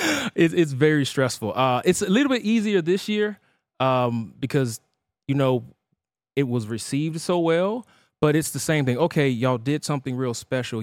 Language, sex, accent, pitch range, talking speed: English, male, American, 120-165 Hz, 170 wpm